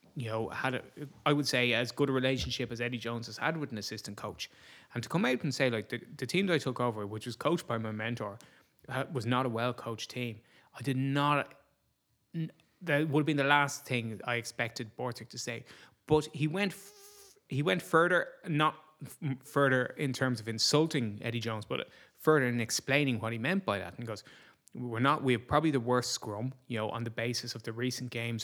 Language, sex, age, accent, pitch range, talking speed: English, male, 20-39, Irish, 115-140 Hz, 225 wpm